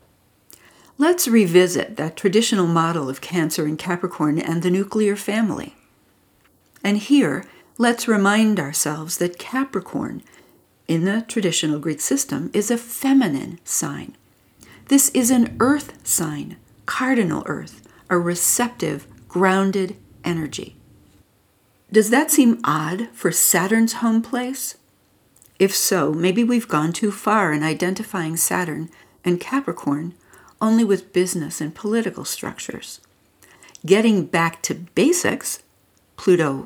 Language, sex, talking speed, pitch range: English, female, 115 wpm, 165-225 Hz